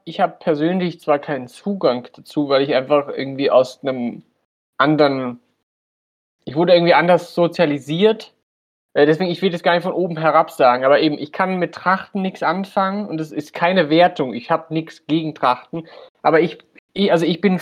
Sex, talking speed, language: male, 180 wpm, German